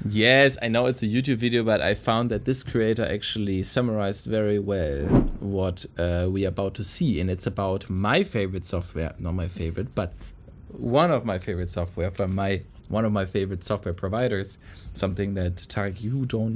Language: English